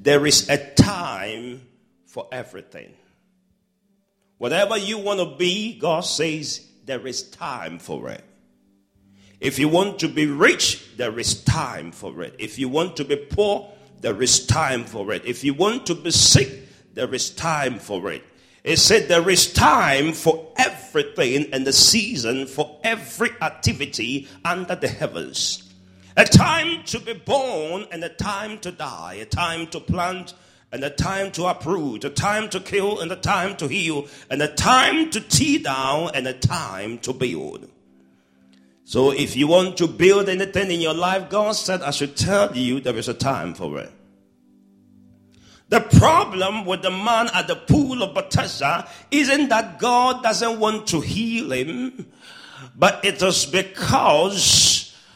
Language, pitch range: English, 135-200 Hz